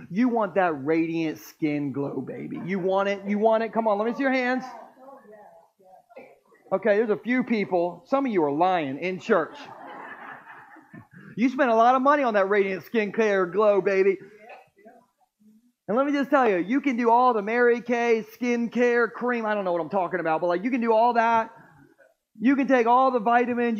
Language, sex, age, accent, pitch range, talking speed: Ukrainian, male, 30-49, American, 180-240 Hz, 205 wpm